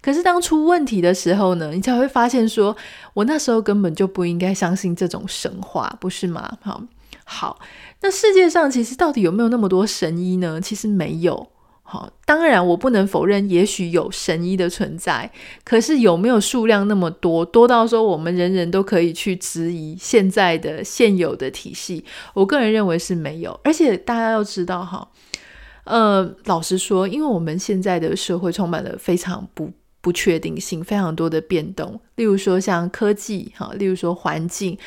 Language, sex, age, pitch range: Chinese, female, 20-39, 180-225 Hz